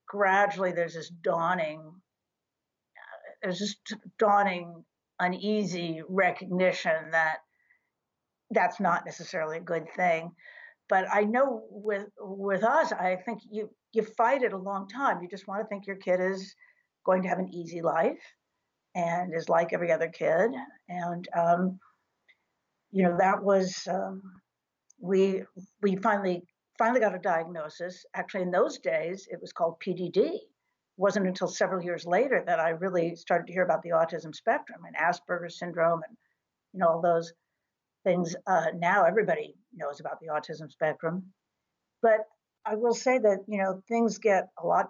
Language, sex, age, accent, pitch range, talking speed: English, female, 60-79, American, 170-205 Hz, 150 wpm